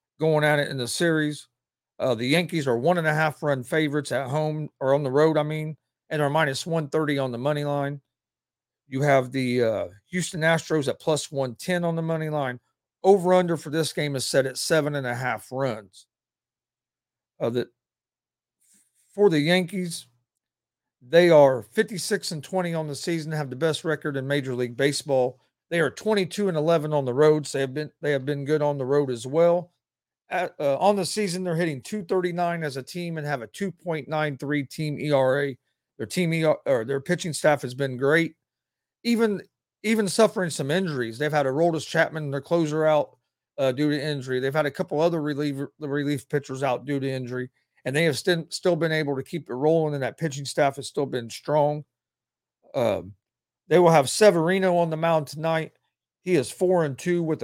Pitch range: 135-165 Hz